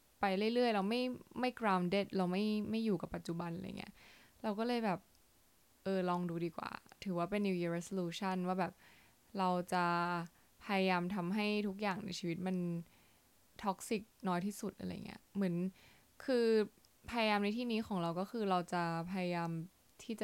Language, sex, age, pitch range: Thai, female, 10-29, 175-210 Hz